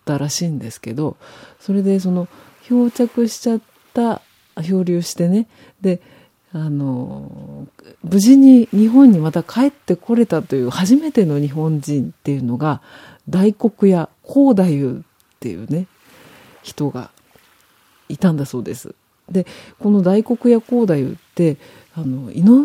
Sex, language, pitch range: female, Japanese, 140-225 Hz